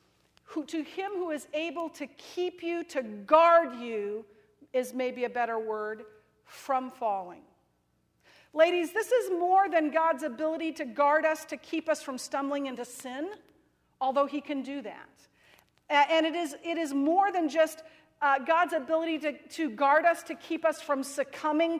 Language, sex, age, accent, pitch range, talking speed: English, female, 50-69, American, 260-335 Hz, 160 wpm